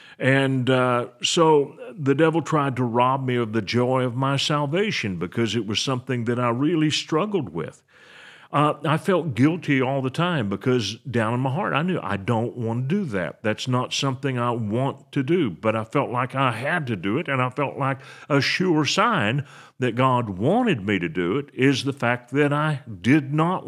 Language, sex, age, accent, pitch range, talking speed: English, male, 50-69, American, 115-145 Hz, 205 wpm